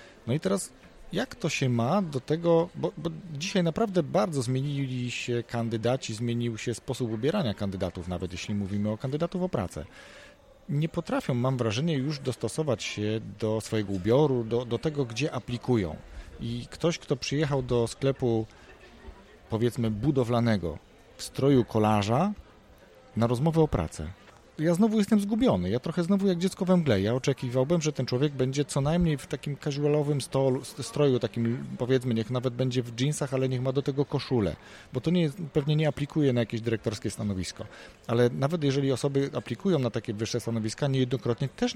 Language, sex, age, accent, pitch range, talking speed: Polish, male, 40-59, native, 115-150 Hz, 165 wpm